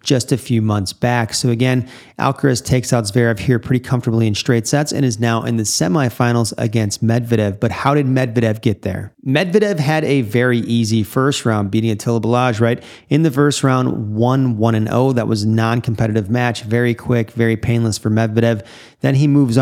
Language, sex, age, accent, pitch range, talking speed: English, male, 30-49, American, 115-135 Hz, 185 wpm